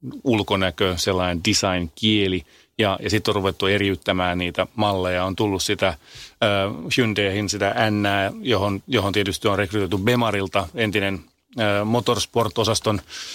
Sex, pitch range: male, 95-115 Hz